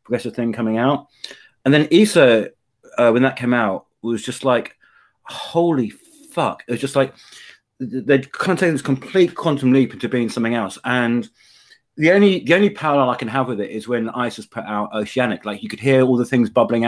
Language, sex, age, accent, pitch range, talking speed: English, male, 30-49, British, 120-150 Hz, 205 wpm